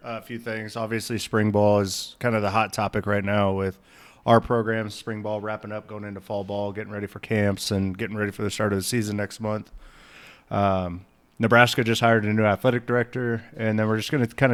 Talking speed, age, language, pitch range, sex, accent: 225 wpm, 30-49, English, 100-115 Hz, male, American